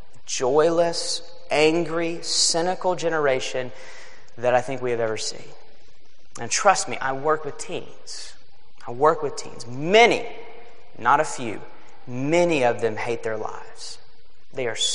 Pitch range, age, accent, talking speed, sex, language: 130-185 Hz, 30-49, American, 135 wpm, male, English